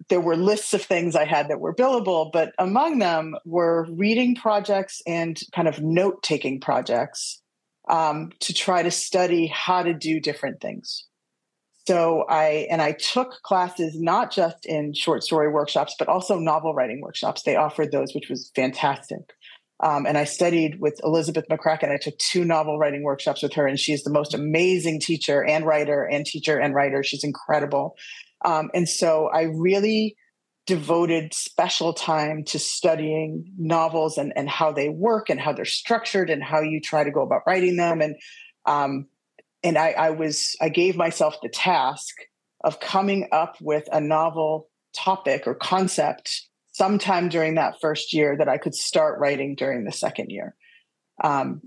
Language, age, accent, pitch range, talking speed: English, 40-59, American, 150-180 Hz, 175 wpm